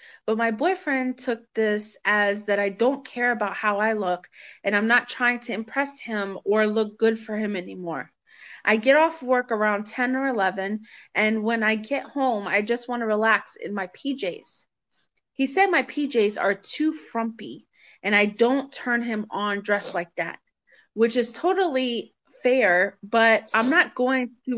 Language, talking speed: English, 180 wpm